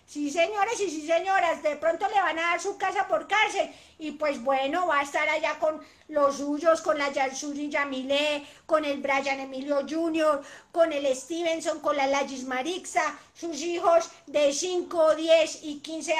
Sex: female